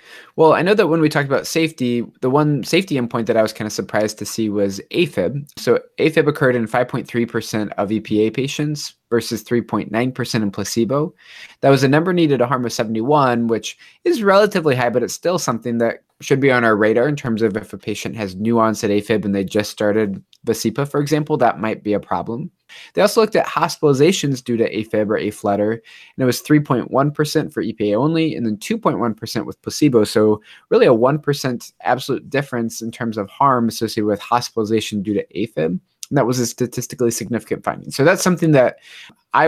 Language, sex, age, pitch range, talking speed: English, male, 20-39, 110-145 Hz, 200 wpm